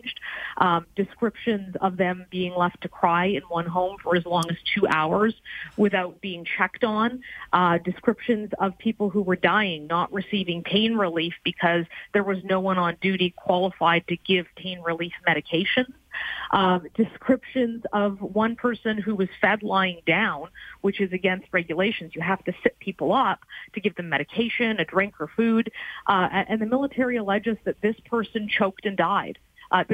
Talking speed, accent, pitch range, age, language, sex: 170 wpm, American, 180-220 Hz, 40-59, English, female